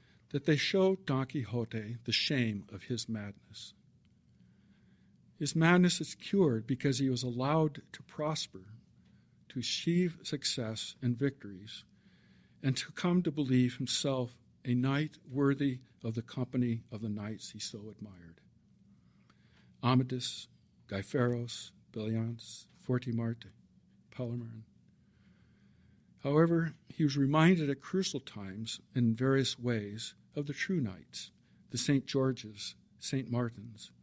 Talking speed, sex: 120 wpm, male